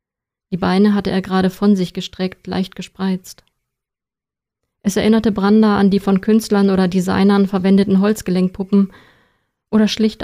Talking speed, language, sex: 135 wpm, German, female